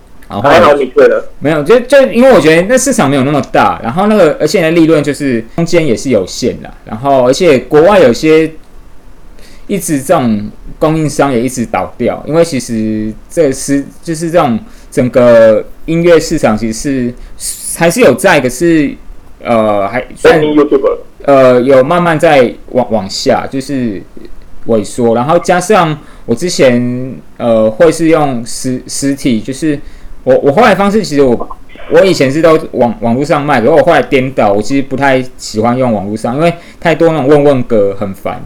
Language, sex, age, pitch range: Chinese, male, 20-39, 115-165 Hz